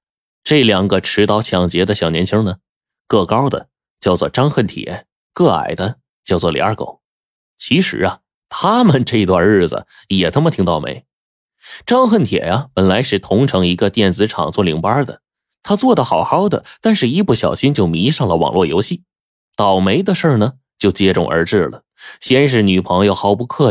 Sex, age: male, 20-39